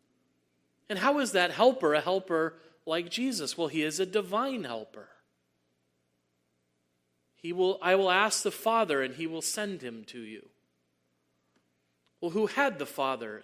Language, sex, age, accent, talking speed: English, male, 40-59, American, 150 wpm